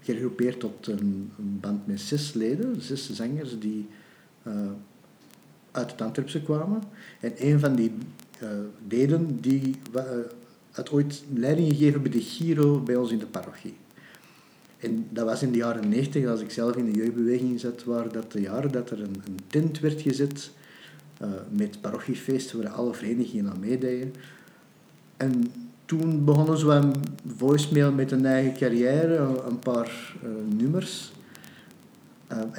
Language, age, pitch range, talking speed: Dutch, 50-69, 115-145 Hz, 150 wpm